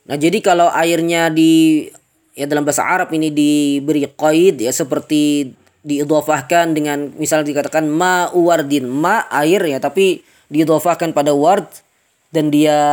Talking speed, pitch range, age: 130 wpm, 150-175 Hz, 20-39